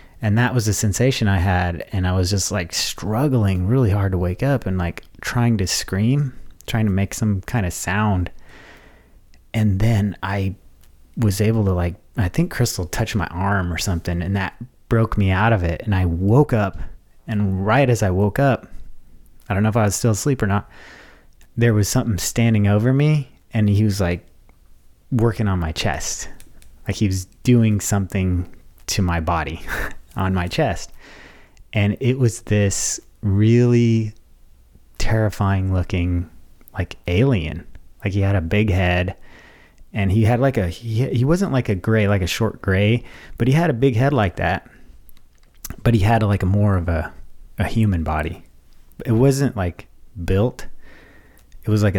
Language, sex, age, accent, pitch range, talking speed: English, male, 30-49, American, 90-115 Hz, 175 wpm